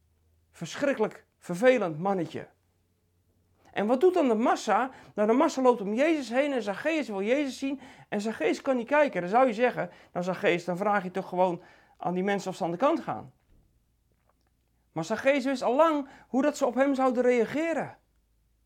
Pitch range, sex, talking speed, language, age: 185-265 Hz, male, 185 wpm, Dutch, 40-59